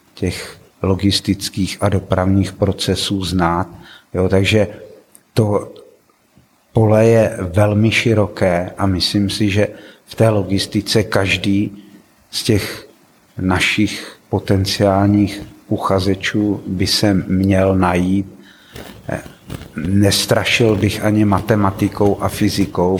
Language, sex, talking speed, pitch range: Czech, male, 90 wpm, 95-100 Hz